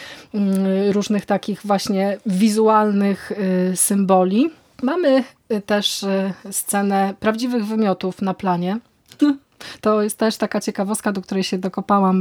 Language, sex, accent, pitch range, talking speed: Polish, female, native, 185-220 Hz, 105 wpm